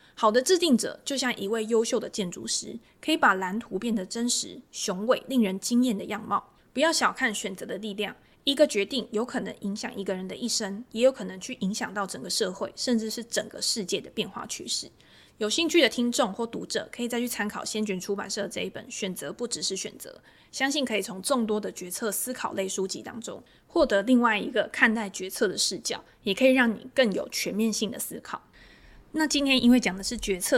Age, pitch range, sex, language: 20-39, 200-245 Hz, female, Chinese